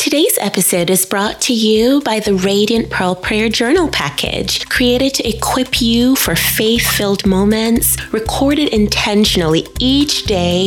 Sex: female